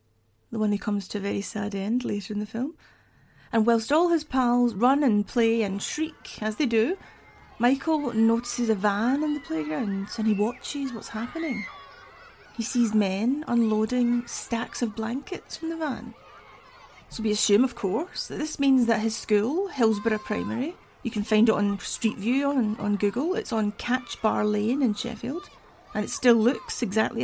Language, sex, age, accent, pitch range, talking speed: English, female, 30-49, British, 220-275 Hz, 185 wpm